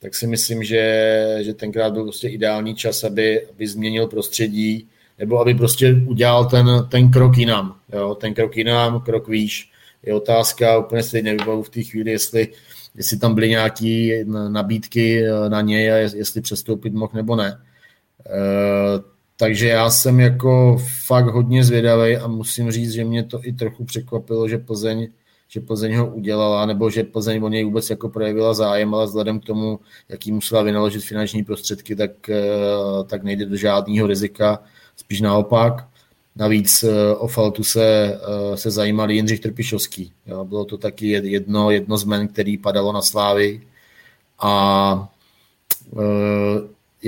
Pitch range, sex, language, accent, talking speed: 105-115 Hz, male, Czech, native, 155 wpm